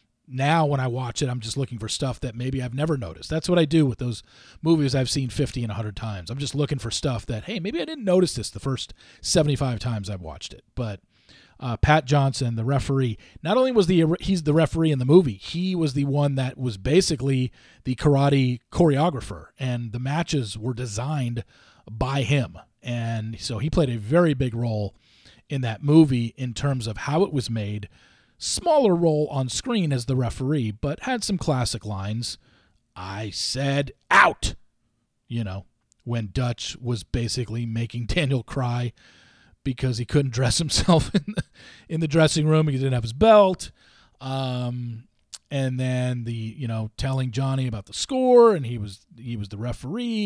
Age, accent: 40-59, American